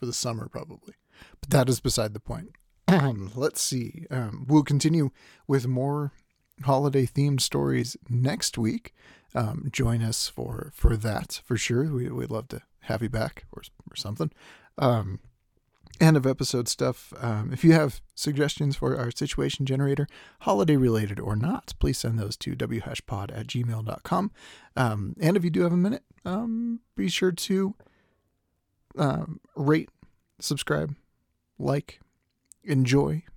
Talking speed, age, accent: 145 wpm, 40-59, American